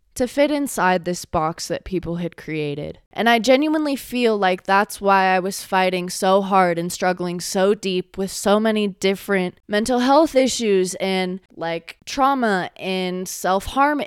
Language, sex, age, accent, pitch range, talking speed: English, female, 20-39, American, 185-235 Hz, 160 wpm